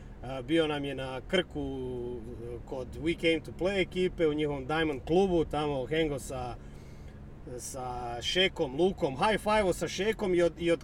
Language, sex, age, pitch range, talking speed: Croatian, male, 30-49, 135-170 Hz, 150 wpm